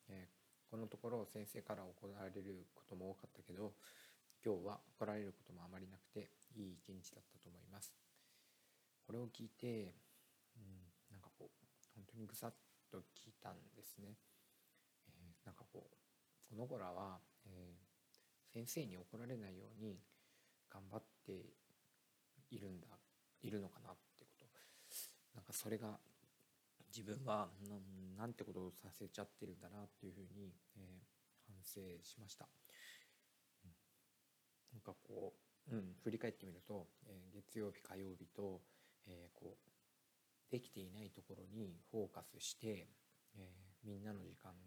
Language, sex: Japanese, male